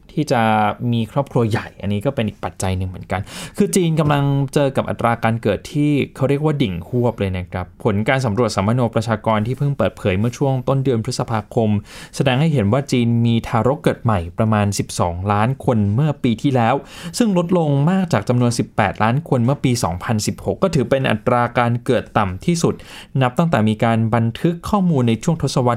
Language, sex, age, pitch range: Thai, male, 20-39, 110-150 Hz